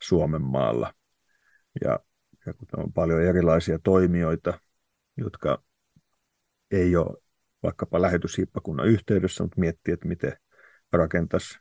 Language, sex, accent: Finnish, male, native